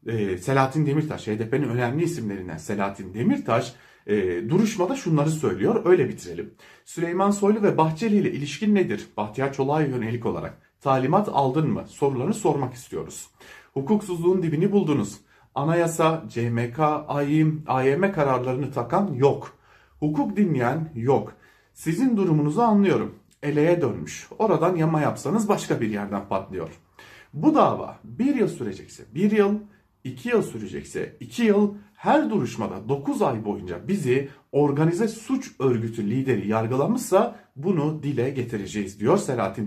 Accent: Turkish